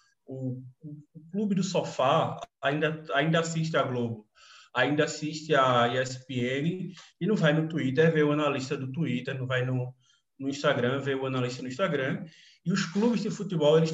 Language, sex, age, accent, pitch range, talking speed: Portuguese, male, 20-39, Brazilian, 145-190 Hz, 170 wpm